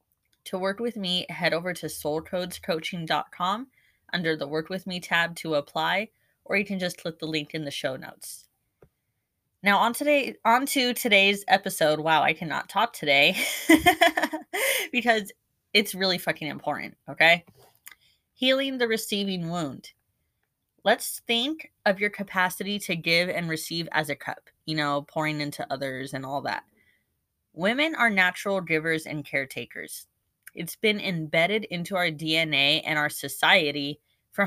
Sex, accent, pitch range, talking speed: female, American, 150-200 Hz, 150 wpm